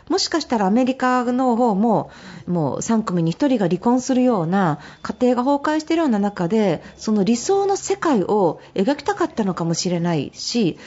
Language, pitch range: Japanese, 190-280 Hz